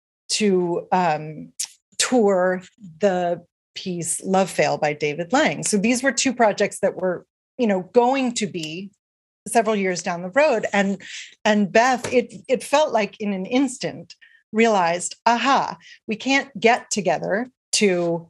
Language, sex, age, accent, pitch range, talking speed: English, female, 40-59, American, 180-235 Hz, 145 wpm